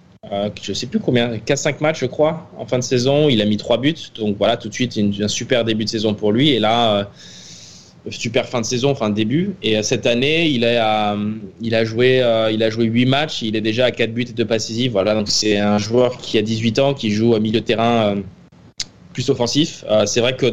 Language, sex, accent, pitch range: French, male, French, 105-130 Hz